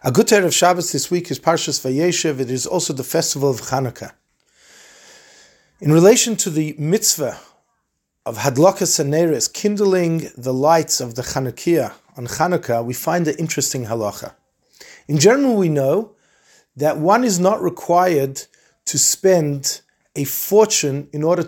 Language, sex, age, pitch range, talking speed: English, male, 30-49, 145-195 Hz, 145 wpm